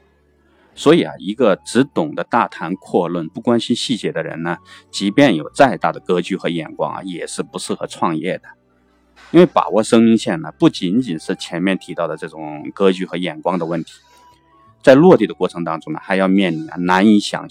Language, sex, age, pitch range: Chinese, male, 30-49, 85-115 Hz